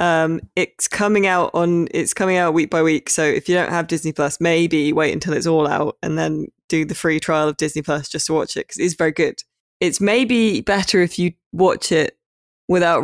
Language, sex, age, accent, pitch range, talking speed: English, female, 20-39, British, 150-175 Hz, 225 wpm